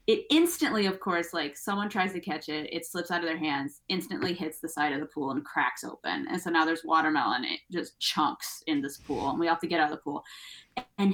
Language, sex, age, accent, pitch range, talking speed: English, female, 20-39, American, 180-295 Hz, 255 wpm